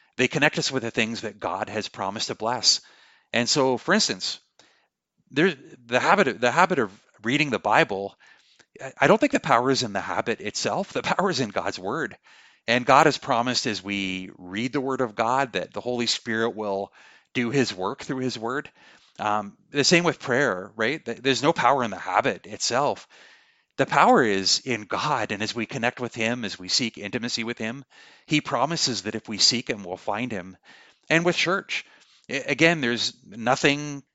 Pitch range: 105-135 Hz